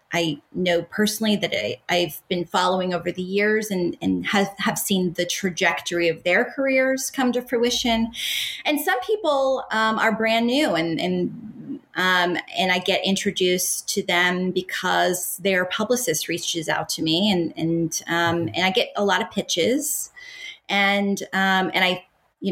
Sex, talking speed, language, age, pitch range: female, 165 wpm, English, 30-49, 185-245 Hz